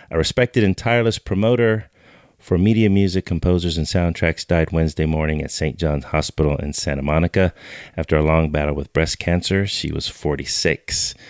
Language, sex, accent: English, male, American